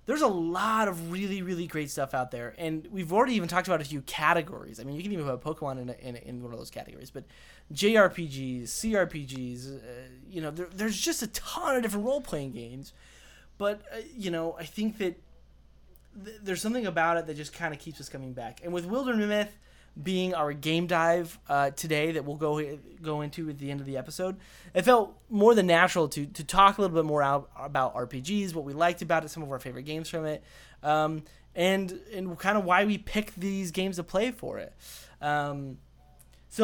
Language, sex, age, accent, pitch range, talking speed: English, male, 20-39, American, 140-195 Hz, 220 wpm